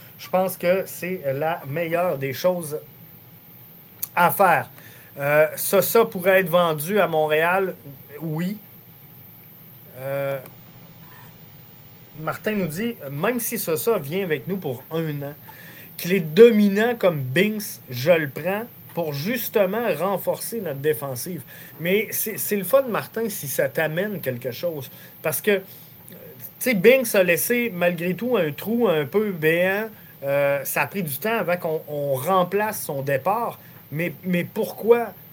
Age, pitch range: 30-49, 155-205 Hz